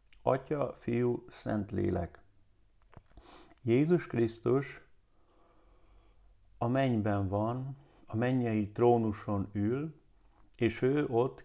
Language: Hungarian